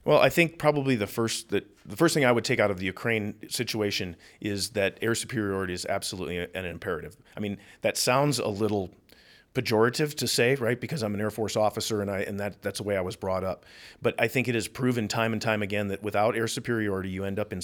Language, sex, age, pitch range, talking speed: English, male, 40-59, 90-115 Hz, 240 wpm